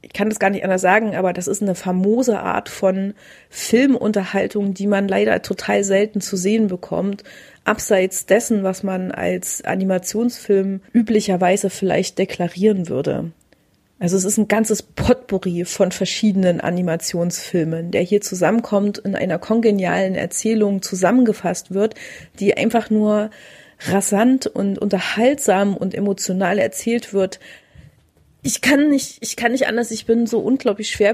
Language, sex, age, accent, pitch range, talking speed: German, female, 40-59, German, 185-215 Hz, 135 wpm